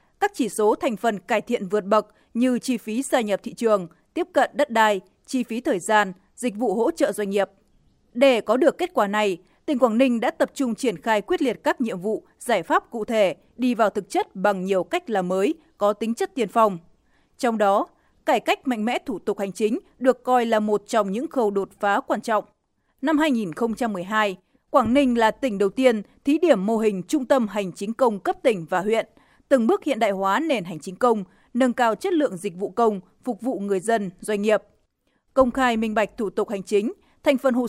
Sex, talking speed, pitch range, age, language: female, 225 wpm, 205-260 Hz, 20-39, Vietnamese